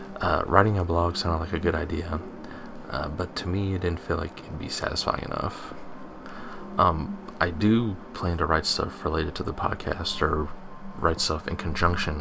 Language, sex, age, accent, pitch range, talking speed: English, male, 20-39, American, 85-95 Hz, 180 wpm